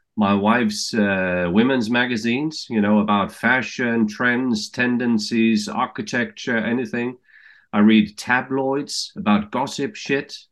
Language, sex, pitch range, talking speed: English, male, 105-145 Hz, 110 wpm